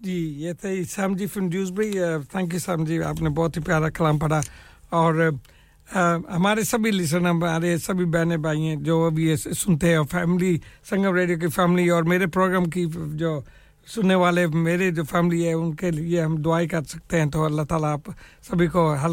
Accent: Indian